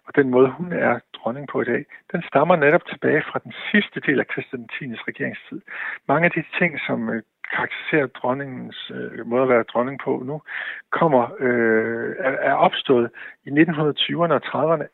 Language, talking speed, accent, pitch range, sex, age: Danish, 165 wpm, native, 125-170 Hz, male, 60-79